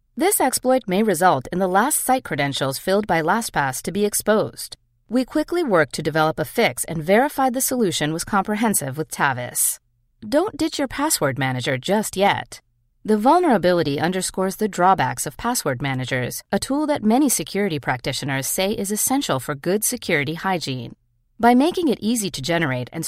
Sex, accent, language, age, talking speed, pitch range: female, American, English, 40-59, 170 wpm, 145-230 Hz